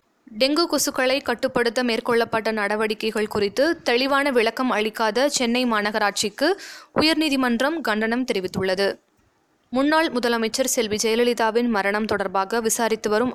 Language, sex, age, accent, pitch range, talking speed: Tamil, female, 20-39, native, 220-275 Hz, 100 wpm